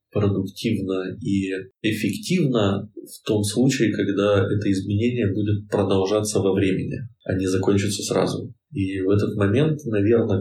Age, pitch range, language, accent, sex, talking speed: 20-39, 95-110 Hz, Russian, native, male, 125 wpm